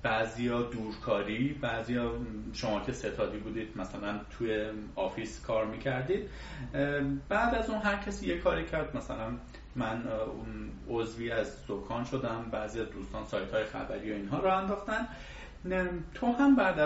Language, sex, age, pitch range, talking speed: Persian, male, 30-49, 120-180 Hz, 140 wpm